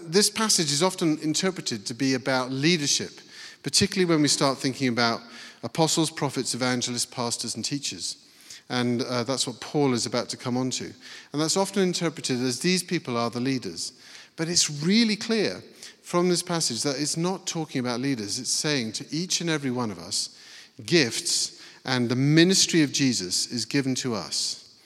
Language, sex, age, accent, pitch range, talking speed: English, male, 40-59, British, 125-160 Hz, 180 wpm